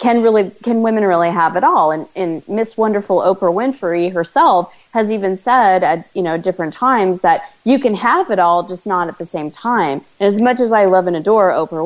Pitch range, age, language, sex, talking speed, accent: 170-225 Hz, 30-49, English, female, 225 wpm, American